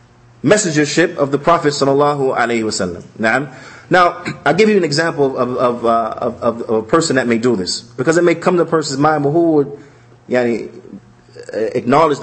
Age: 30-49